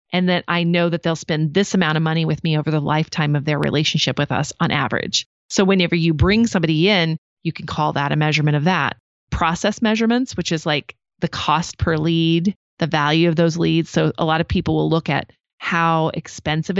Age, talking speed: 30-49, 220 wpm